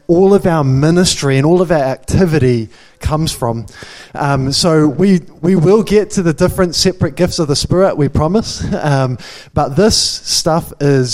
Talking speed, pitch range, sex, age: 170 wpm, 135-170 Hz, male, 20-39